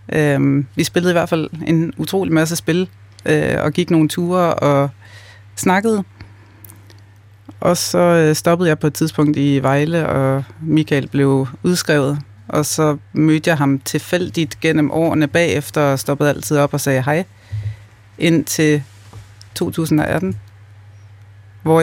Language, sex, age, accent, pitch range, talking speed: Danish, female, 30-49, native, 105-155 Hz, 130 wpm